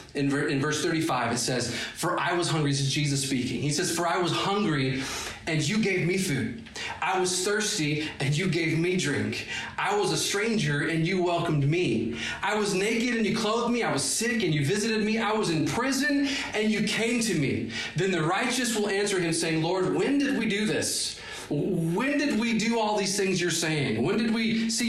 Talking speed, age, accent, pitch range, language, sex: 215 wpm, 30-49, American, 130-195 Hz, English, male